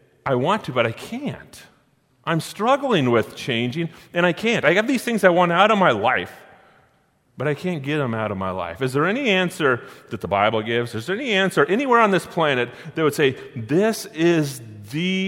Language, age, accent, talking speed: English, 30-49, American, 210 wpm